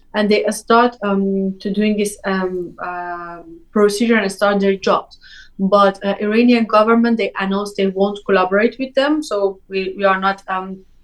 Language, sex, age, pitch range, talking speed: English, female, 20-39, 195-235 Hz, 170 wpm